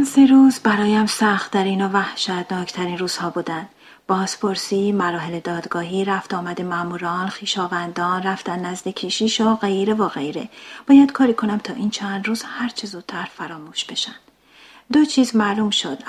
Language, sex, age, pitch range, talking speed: Persian, female, 40-59, 185-245 Hz, 145 wpm